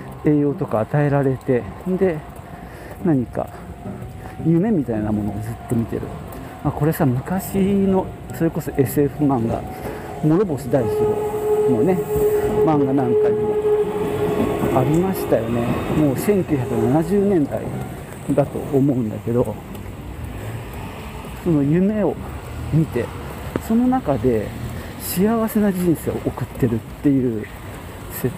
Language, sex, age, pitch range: Japanese, male, 50-69, 115-170 Hz